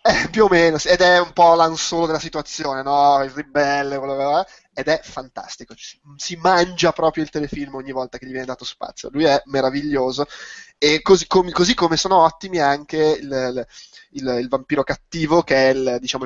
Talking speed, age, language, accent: 200 wpm, 20-39, Italian, native